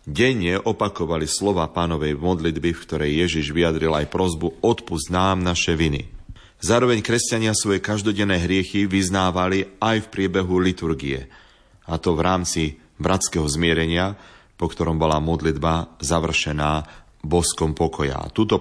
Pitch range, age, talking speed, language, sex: 75-95 Hz, 40-59, 125 wpm, Slovak, male